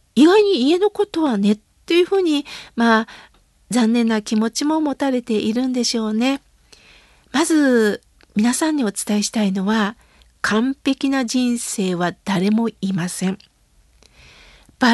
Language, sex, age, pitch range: Japanese, female, 50-69, 220-310 Hz